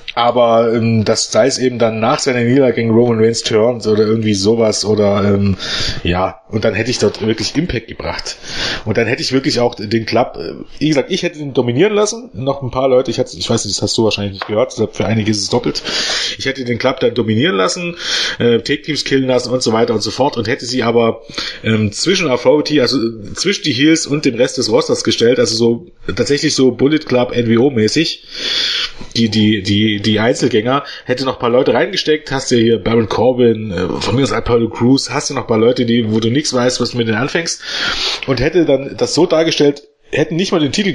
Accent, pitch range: German, 110-135 Hz